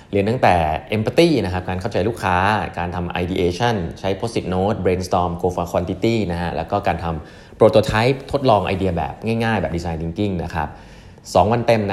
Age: 30-49